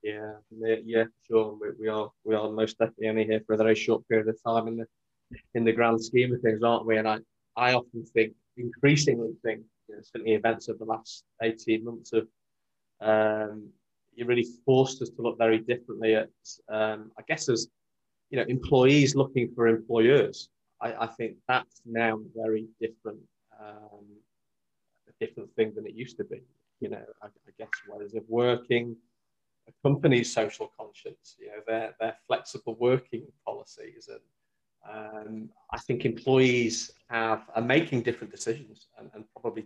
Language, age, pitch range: English, 20-39, 110-120 Hz